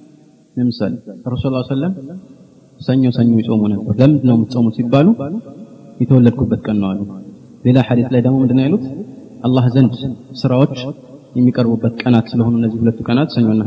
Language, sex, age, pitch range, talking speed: Amharic, male, 30-49, 120-165 Hz, 165 wpm